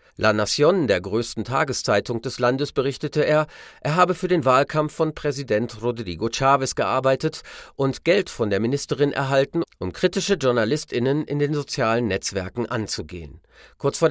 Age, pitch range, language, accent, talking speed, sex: 40-59, 110-150 Hz, German, German, 150 wpm, male